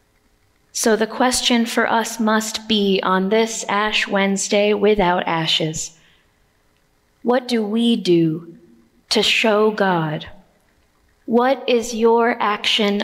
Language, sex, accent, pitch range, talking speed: English, female, American, 195-235 Hz, 110 wpm